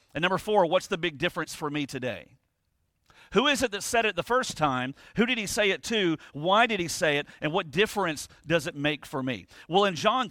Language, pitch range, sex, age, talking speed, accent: English, 150-190 Hz, male, 40-59, 240 wpm, American